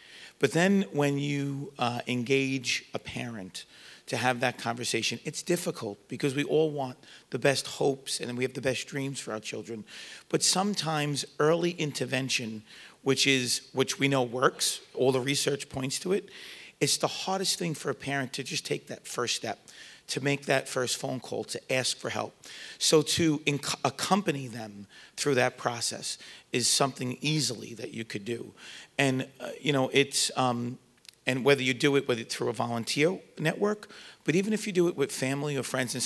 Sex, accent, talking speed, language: male, American, 185 wpm, English